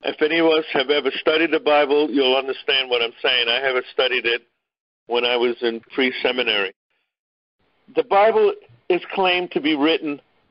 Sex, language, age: male, English, 50-69